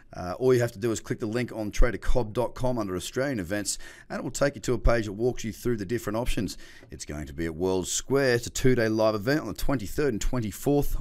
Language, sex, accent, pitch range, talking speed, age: English, male, Australian, 90-130 Hz, 255 wpm, 30-49